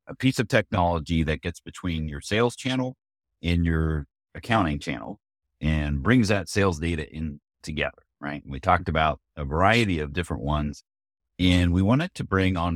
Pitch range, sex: 80-105 Hz, male